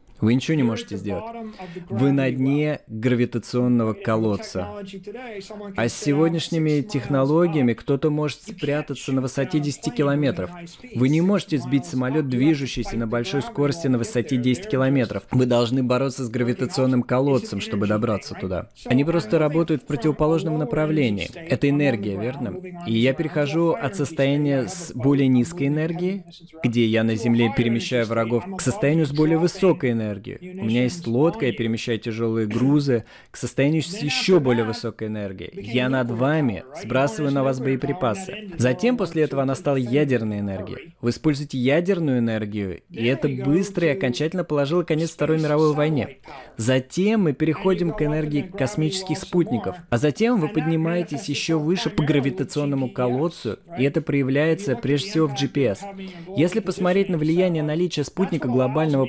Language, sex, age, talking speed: Russian, male, 20-39, 150 wpm